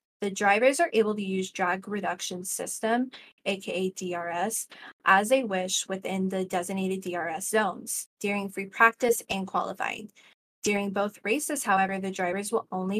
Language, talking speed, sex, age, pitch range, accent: English, 150 wpm, female, 10-29, 185-225 Hz, American